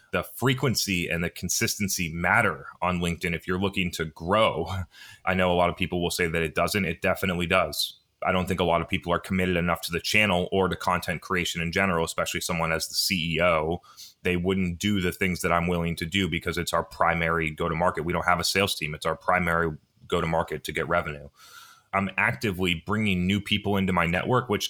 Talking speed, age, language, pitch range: 215 wpm, 30-49, English, 85-95 Hz